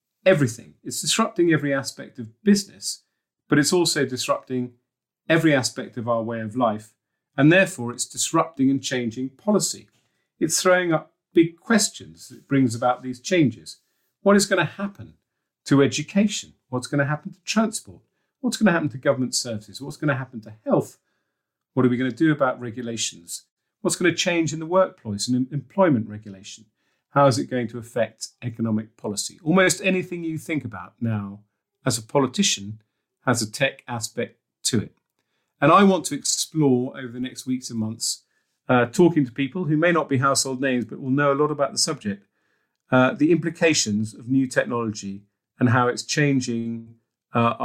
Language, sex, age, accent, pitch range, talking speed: English, male, 40-59, British, 115-155 Hz, 180 wpm